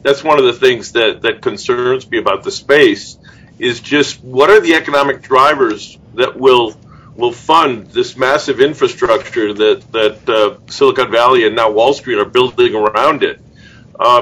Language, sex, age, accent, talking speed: English, male, 50-69, American, 170 wpm